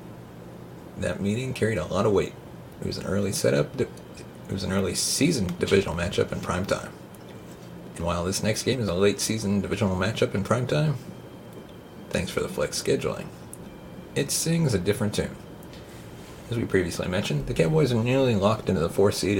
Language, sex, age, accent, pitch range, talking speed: English, male, 40-59, American, 95-125 Hz, 185 wpm